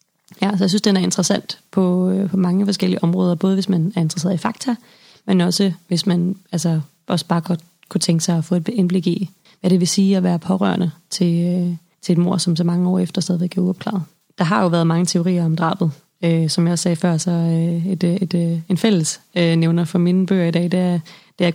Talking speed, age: 230 wpm, 20-39